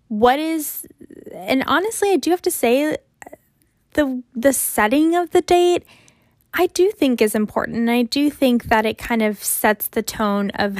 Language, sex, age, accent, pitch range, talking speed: English, female, 10-29, American, 210-265 Hz, 170 wpm